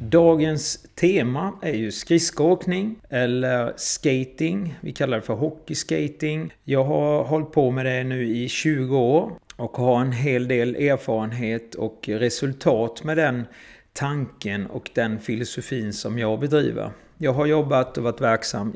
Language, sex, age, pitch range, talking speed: Swedish, male, 30-49, 115-150 Hz, 145 wpm